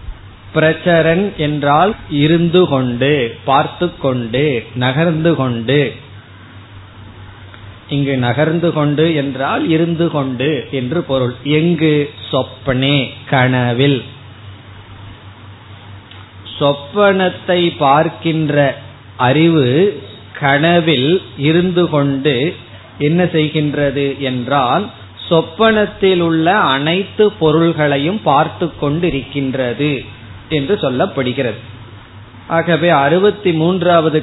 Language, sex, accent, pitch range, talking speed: Tamil, male, native, 120-165 Hz, 35 wpm